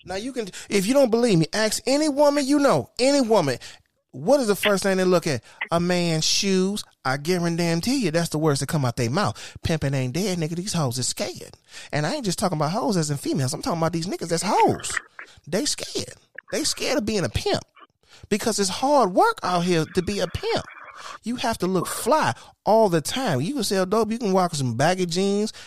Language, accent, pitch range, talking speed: English, American, 145-200 Hz, 230 wpm